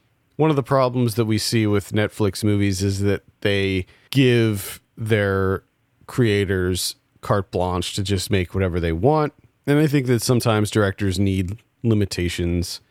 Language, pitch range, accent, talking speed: English, 95-125 Hz, American, 150 wpm